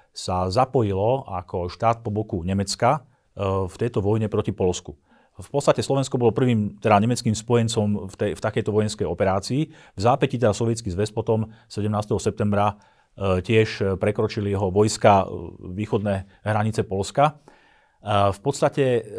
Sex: male